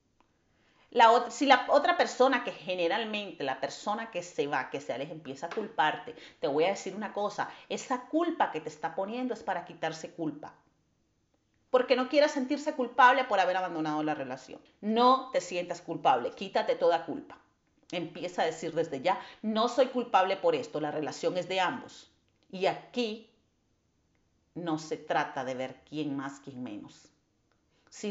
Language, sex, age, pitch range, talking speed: Spanish, female, 40-59, 165-245 Hz, 165 wpm